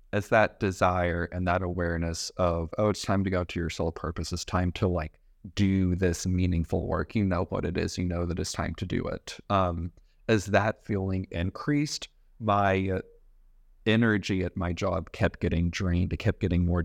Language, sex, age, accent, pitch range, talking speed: English, male, 30-49, American, 85-105 Hz, 190 wpm